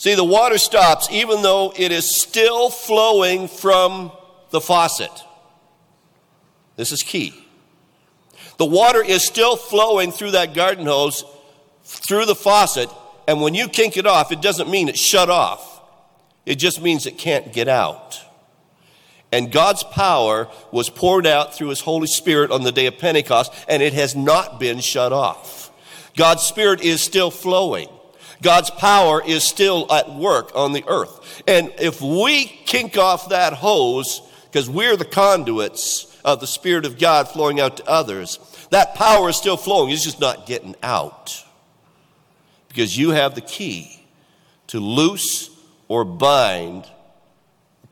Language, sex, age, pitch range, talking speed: English, male, 50-69, 145-190 Hz, 155 wpm